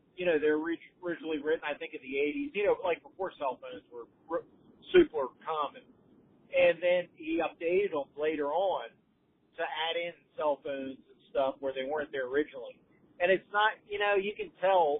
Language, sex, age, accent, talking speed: English, male, 40-59, American, 185 wpm